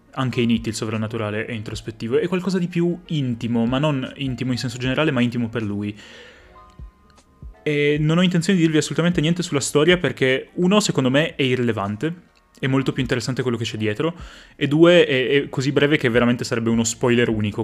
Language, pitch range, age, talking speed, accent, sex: Italian, 110-135 Hz, 20-39, 195 wpm, native, male